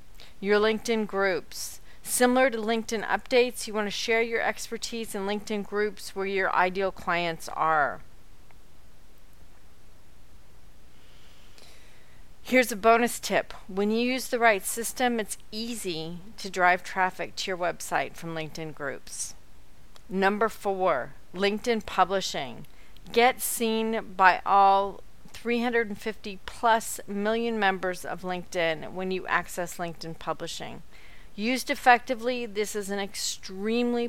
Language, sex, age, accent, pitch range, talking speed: English, female, 40-59, American, 185-225 Hz, 115 wpm